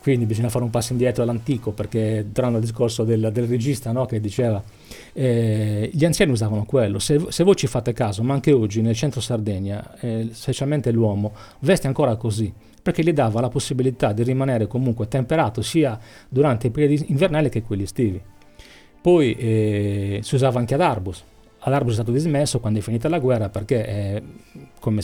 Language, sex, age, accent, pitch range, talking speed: Italian, male, 40-59, native, 110-130 Hz, 180 wpm